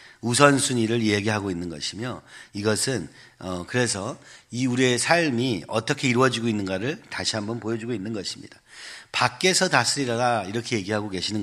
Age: 40-59